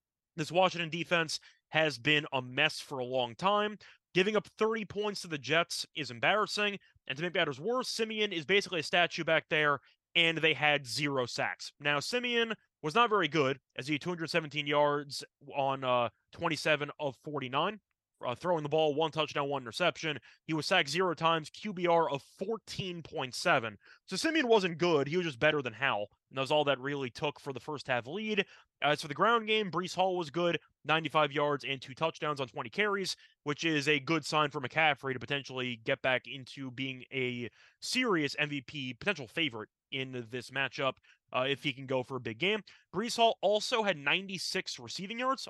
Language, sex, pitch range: English, male, 140-185 Hz